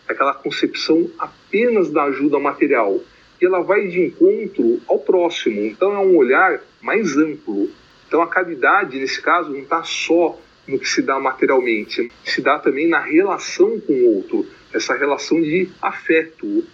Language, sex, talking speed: Portuguese, male, 160 wpm